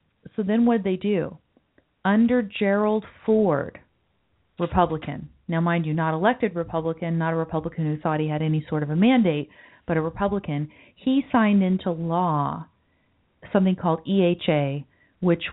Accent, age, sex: American, 40-59, female